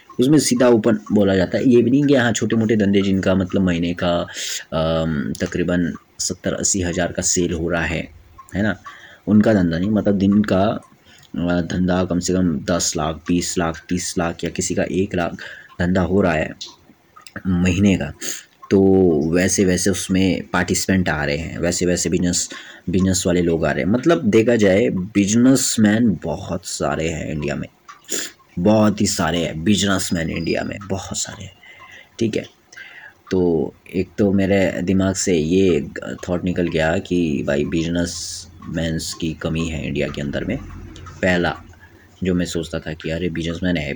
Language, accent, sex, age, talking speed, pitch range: Hindi, native, male, 20-39, 170 wpm, 85-95 Hz